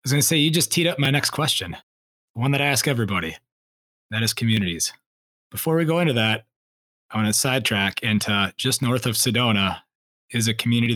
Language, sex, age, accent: English, male, 20-39, American